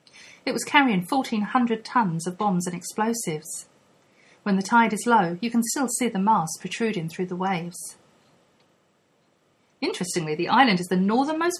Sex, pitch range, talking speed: female, 175-230 Hz, 155 wpm